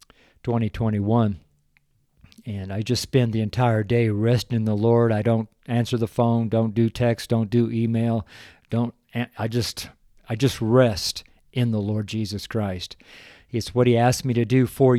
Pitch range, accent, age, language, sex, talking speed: 110-125 Hz, American, 50-69, English, male, 170 wpm